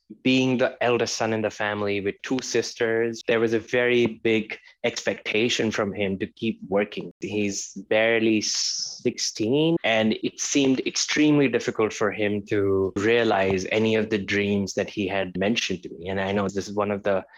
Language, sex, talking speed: English, male, 175 wpm